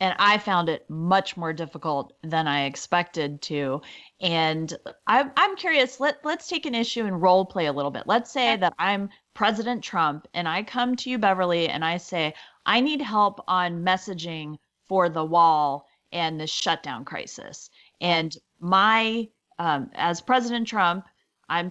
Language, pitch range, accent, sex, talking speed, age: English, 165-205 Hz, American, female, 160 wpm, 30-49